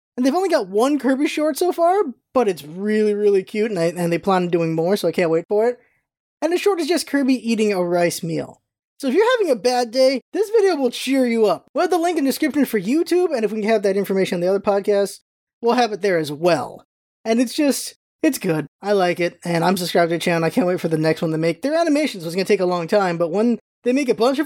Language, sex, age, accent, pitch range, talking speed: English, male, 20-39, American, 195-295 Hz, 285 wpm